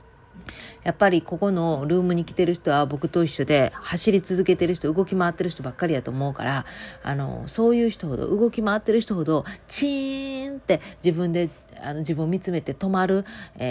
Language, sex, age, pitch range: Japanese, female, 40-59, 145-190 Hz